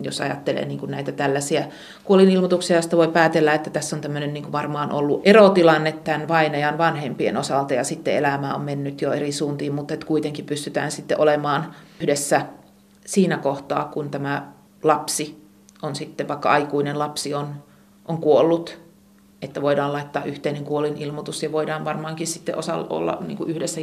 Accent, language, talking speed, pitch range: native, Finnish, 150 wpm, 150-175 Hz